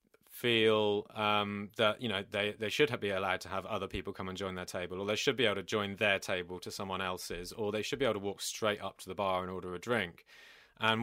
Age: 30-49